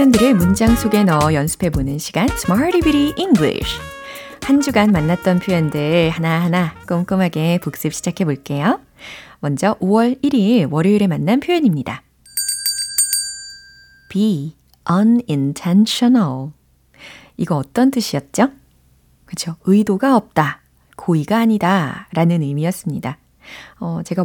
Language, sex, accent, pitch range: Korean, female, native, 160-225 Hz